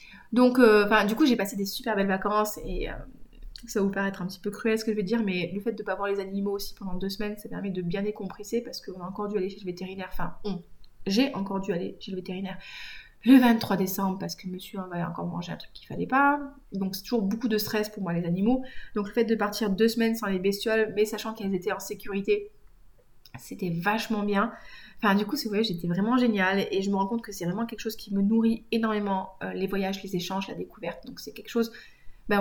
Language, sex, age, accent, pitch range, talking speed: French, female, 30-49, French, 190-220 Hz, 260 wpm